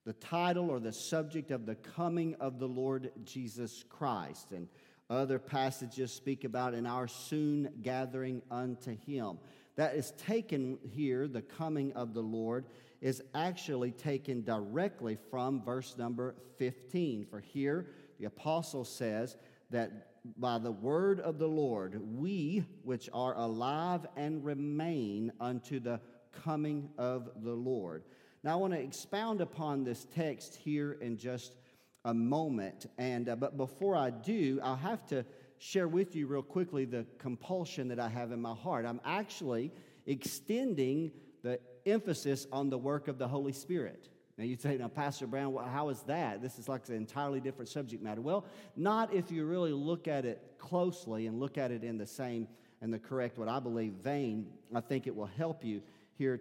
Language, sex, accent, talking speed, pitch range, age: English, male, American, 170 wpm, 120-150 Hz, 50-69